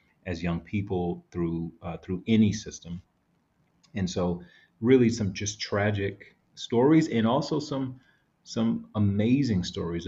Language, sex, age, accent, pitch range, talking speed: English, male, 30-49, American, 90-110 Hz, 125 wpm